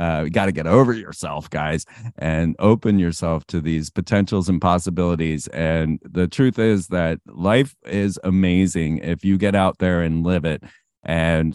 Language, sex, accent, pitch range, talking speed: English, male, American, 80-100 Hz, 170 wpm